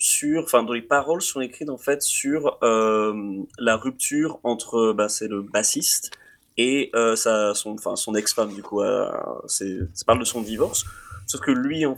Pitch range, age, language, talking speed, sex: 100-120 Hz, 20-39, French, 185 wpm, male